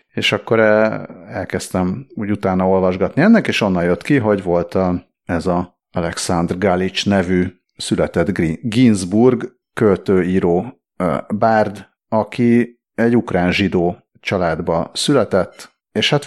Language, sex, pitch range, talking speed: Hungarian, male, 90-105 Hz, 110 wpm